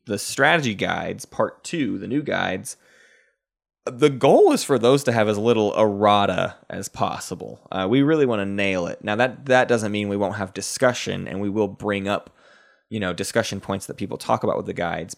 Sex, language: male, English